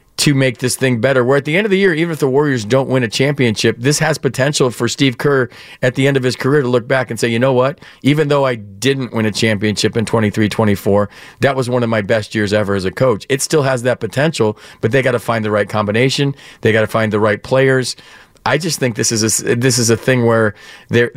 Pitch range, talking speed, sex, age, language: 115-130 Hz, 260 wpm, male, 40-59, English